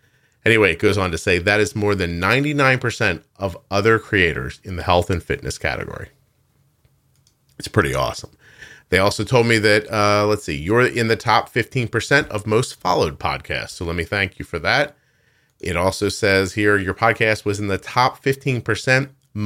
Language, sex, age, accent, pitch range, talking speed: English, male, 40-59, American, 95-130 Hz, 180 wpm